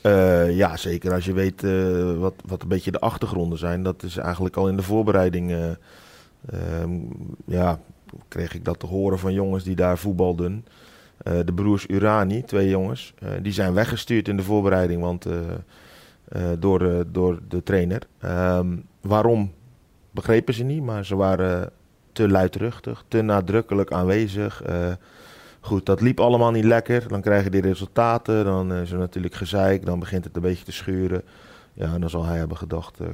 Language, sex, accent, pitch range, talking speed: Dutch, male, Dutch, 90-110 Hz, 185 wpm